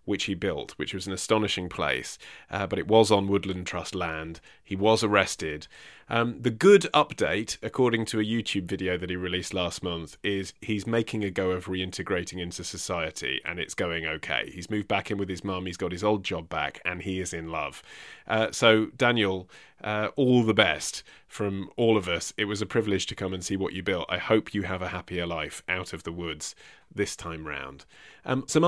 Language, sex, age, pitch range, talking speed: English, male, 30-49, 90-110 Hz, 210 wpm